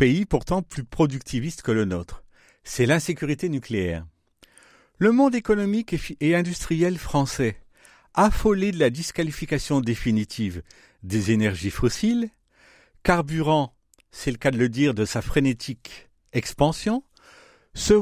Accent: French